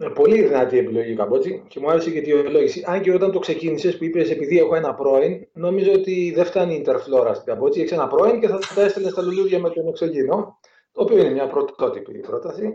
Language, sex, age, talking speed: Greek, male, 30-49, 230 wpm